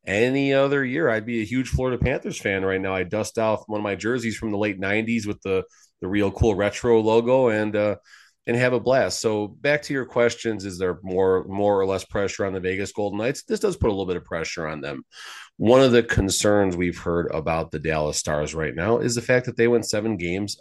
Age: 30-49